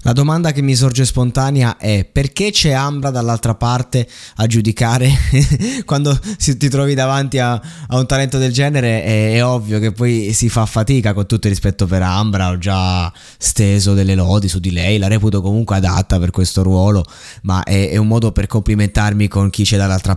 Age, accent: 20-39, native